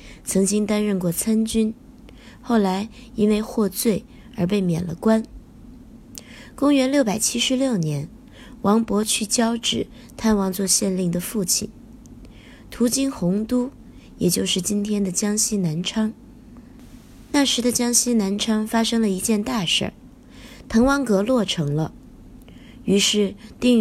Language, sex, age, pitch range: Chinese, female, 20-39, 195-240 Hz